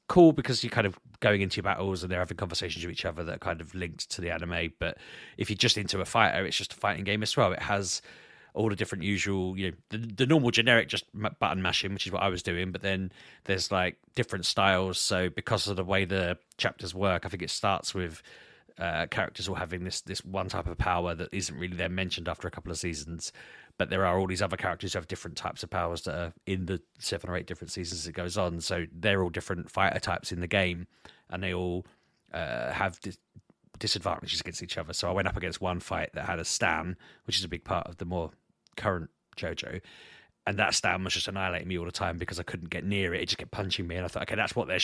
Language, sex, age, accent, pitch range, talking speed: English, male, 30-49, British, 90-100 Hz, 255 wpm